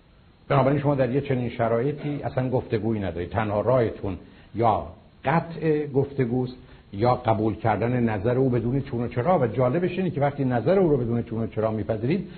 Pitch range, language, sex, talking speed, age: 115-155 Hz, Persian, male, 165 wpm, 70-89